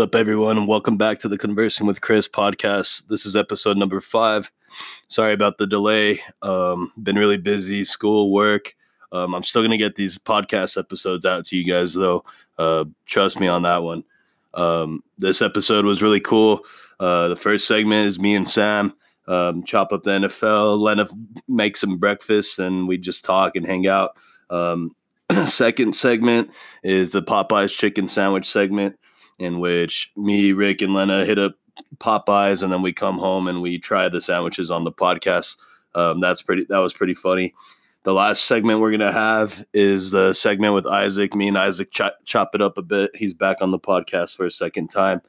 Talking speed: 190 wpm